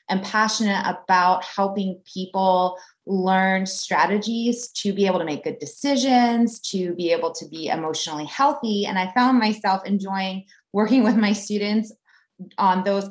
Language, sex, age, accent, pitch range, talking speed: German, female, 30-49, American, 180-225 Hz, 145 wpm